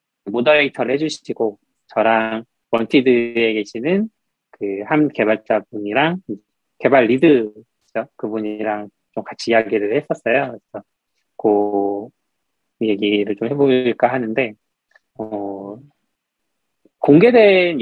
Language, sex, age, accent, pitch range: Korean, male, 20-39, native, 110-155 Hz